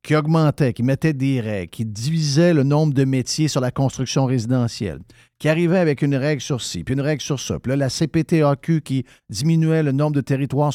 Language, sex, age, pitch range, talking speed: French, male, 50-69, 120-155 Hz, 210 wpm